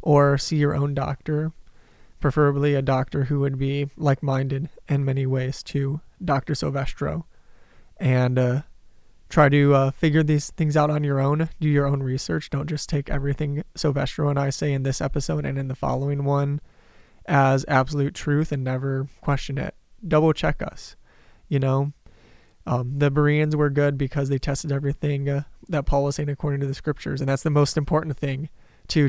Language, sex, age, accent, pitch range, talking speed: English, male, 20-39, American, 135-145 Hz, 180 wpm